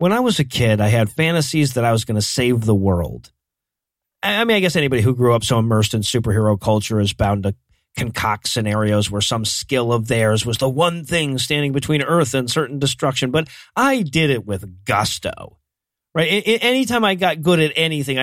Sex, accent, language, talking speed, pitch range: male, American, English, 205 wpm, 120-205 Hz